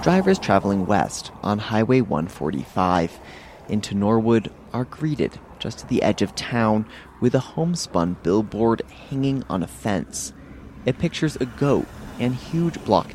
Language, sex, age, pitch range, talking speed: English, male, 30-49, 105-150 Hz, 140 wpm